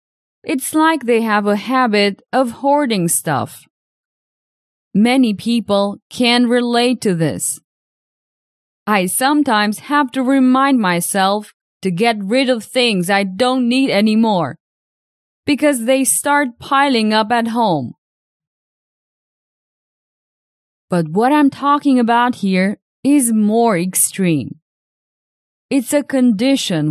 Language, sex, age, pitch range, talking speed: English, female, 20-39, 200-265 Hz, 110 wpm